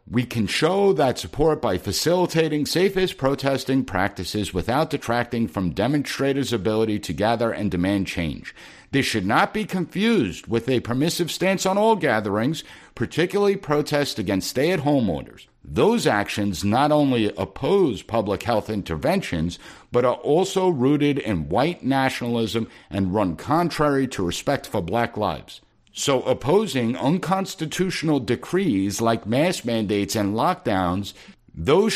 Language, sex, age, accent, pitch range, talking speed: English, male, 60-79, American, 105-155 Hz, 130 wpm